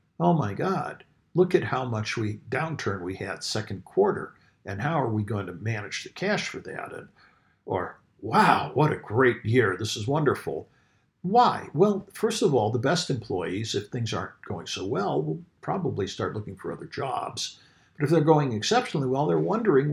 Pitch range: 105-165 Hz